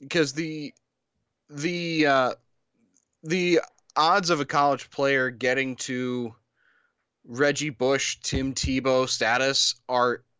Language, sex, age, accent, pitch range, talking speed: English, male, 20-39, American, 120-160 Hz, 105 wpm